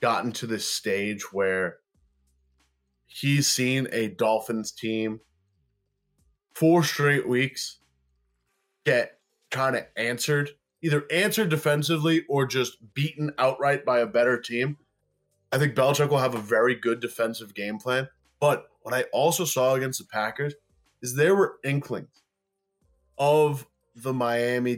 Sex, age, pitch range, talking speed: male, 20-39, 110-135 Hz, 130 wpm